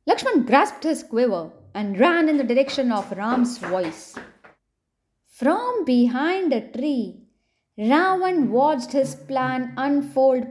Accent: Indian